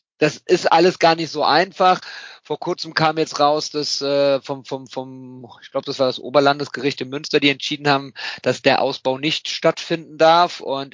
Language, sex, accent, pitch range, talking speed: German, male, German, 130-150 Hz, 190 wpm